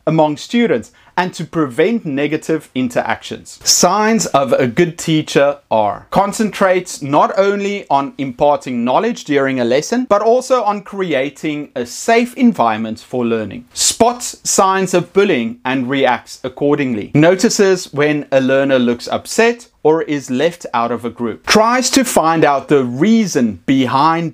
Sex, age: male, 30-49